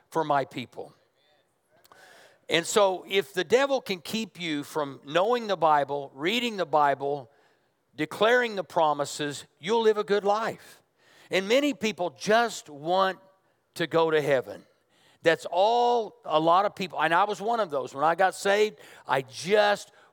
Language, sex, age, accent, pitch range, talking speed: English, male, 50-69, American, 155-200 Hz, 160 wpm